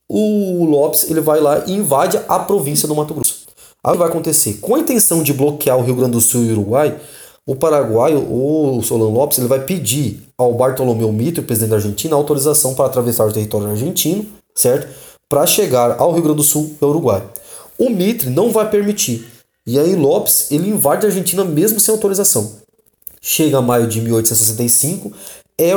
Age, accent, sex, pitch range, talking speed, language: 20-39, Brazilian, male, 115-165 Hz, 190 wpm, Portuguese